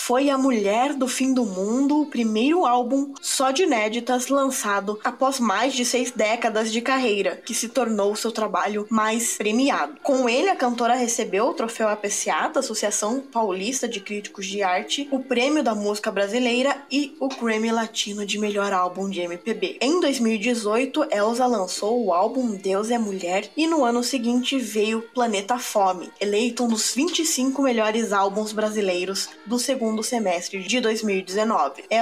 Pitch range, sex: 210-260 Hz, female